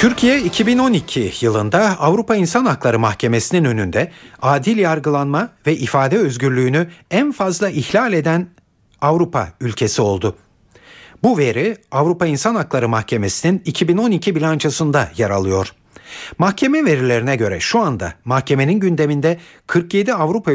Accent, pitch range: native, 115-175 Hz